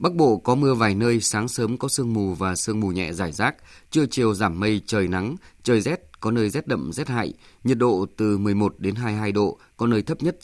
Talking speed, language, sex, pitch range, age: 240 wpm, Vietnamese, male, 100-125 Hz, 20-39